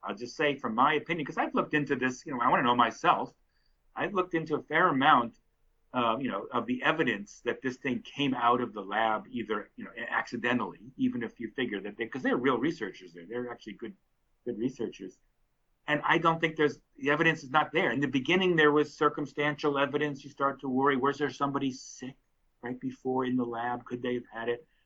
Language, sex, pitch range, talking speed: English, male, 120-145 Hz, 225 wpm